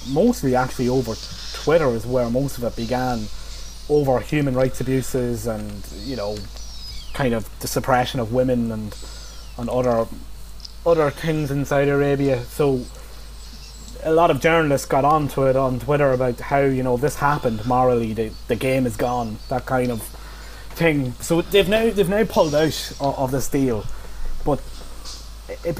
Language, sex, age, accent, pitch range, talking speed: English, male, 20-39, British, 115-140 Hz, 160 wpm